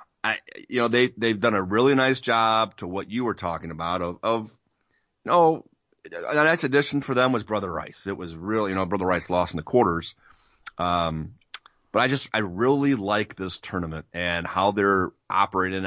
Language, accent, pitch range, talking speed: English, American, 80-105 Hz, 200 wpm